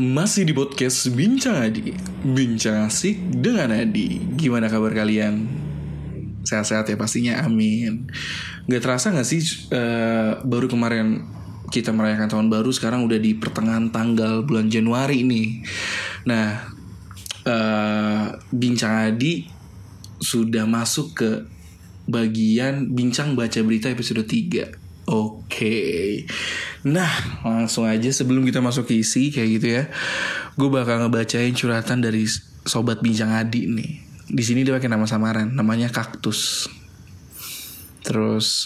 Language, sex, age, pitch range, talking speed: Indonesian, male, 20-39, 110-125 Hz, 120 wpm